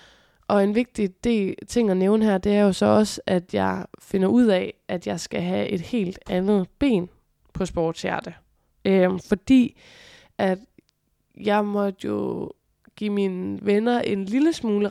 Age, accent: 20-39, native